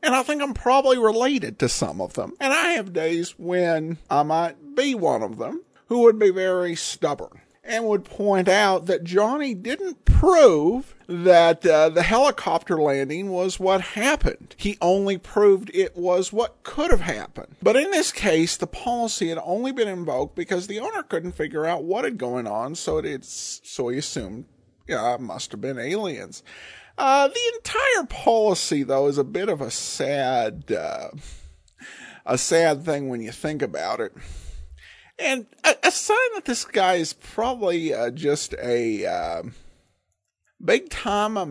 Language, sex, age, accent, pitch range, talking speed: English, male, 50-69, American, 160-250 Hz, 170 wpm